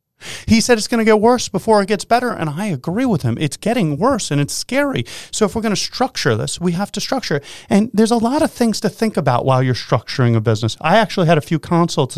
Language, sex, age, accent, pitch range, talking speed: English, male, 30-49, American, 115-175 Hz, 265 wpm